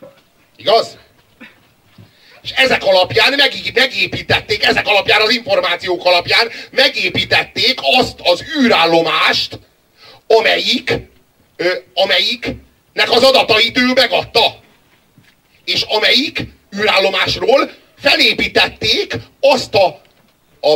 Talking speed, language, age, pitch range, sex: 85 wpm, Hungarian, 40-59, 185-275 Hz, male